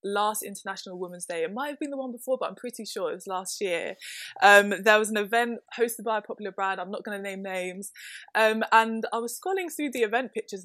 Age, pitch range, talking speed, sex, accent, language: 20-39, 195-250 Hz, 250 wpm, female, British, English